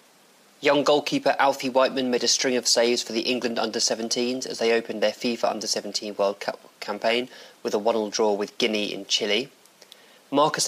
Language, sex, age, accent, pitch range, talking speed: English, male, 20-39, British, 105-125 Hz, 175 wpm